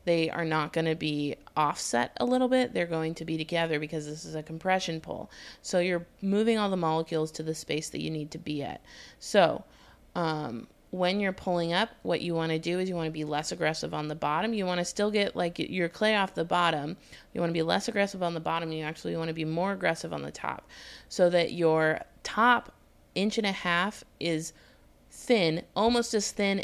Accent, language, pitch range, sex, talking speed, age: American, English, 160-190 Hz, female, 225 wpm, 20-39